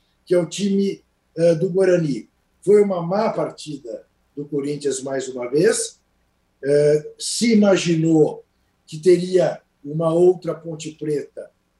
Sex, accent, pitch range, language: male, Brazilian, 150-205 Hz, Portuguese